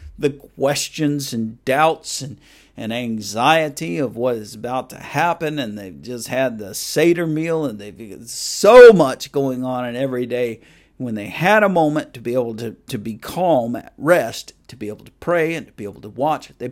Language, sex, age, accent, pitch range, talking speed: English, male, 50-69, American, 115-155 Hz, 195 wpm